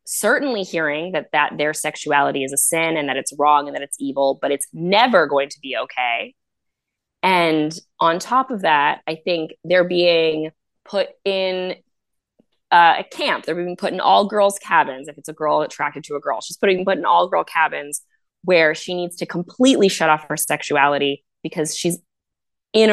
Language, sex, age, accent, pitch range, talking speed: English, female, 20-39, American, 145-180 Hz, 190 wpm